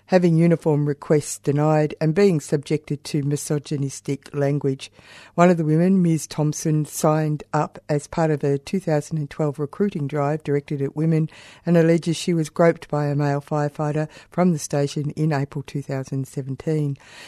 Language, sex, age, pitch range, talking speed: English, female, 60-79, 145-160 Hz, 150 wpm